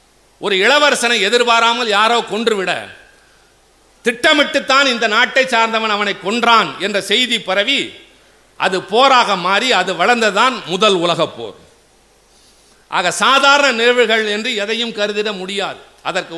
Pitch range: 195-245 Hz